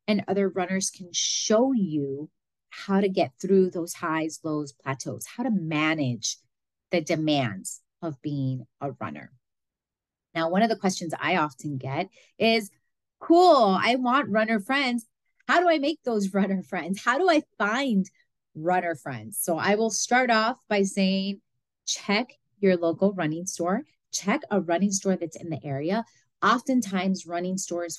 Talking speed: 155 wpm